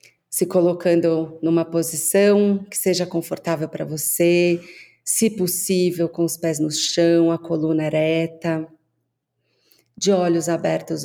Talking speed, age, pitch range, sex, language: 120 wpm, 40-59, 150-180 Hz, female, Portuguese